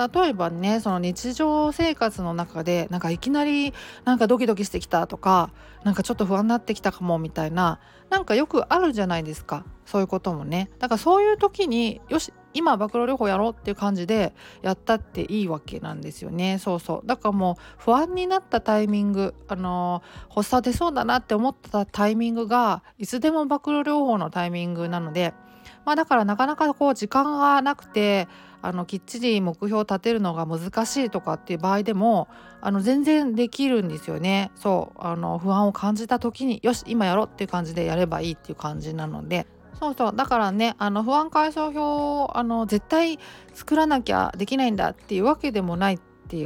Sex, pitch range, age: female, 180-255 Hz, 40-59